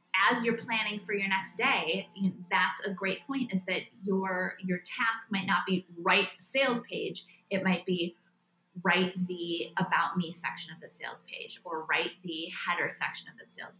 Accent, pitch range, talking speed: American, 180-205 Hz, 185 wpm